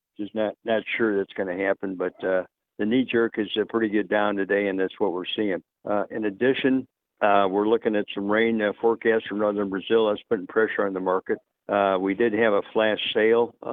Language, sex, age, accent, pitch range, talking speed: English, male, 60-79, American, 100-115 Hz, 225 wpm